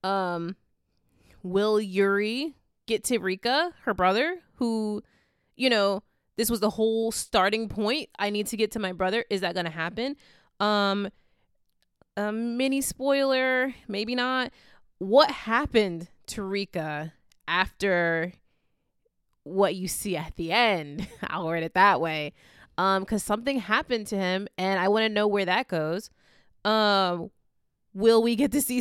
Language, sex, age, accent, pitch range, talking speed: English, female, 20-39, American, 175-230 Hz, 150 wpm